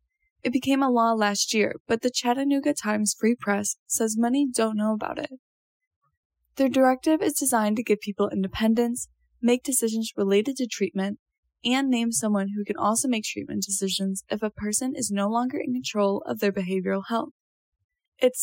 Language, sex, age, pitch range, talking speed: English, female, 20-39, 210-255 Hz, 175 wpm